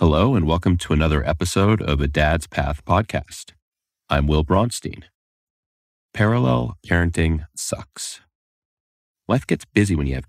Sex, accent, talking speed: male, American, 135 wpm